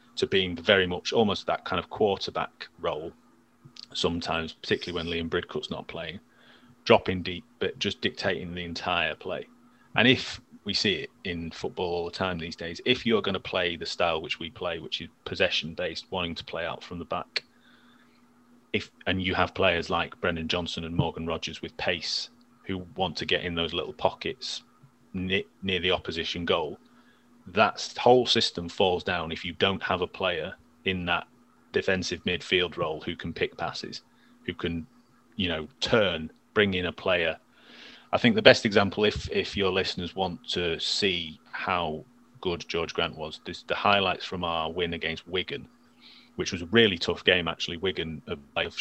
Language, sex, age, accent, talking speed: English, male, 30-49, British, 180 wpm